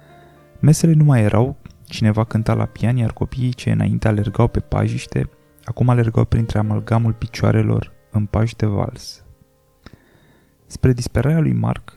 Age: 20-39